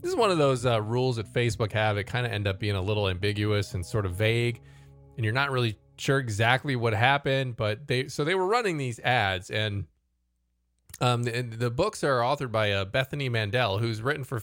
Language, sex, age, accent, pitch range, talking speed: English, male, 20-39, American, 105-130 Hz, 220 wpm